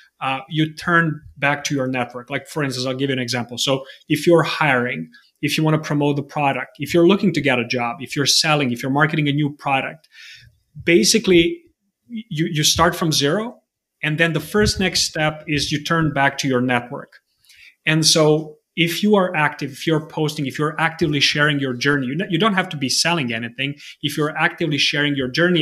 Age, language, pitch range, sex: 30-49, English, 130-155 Hz, male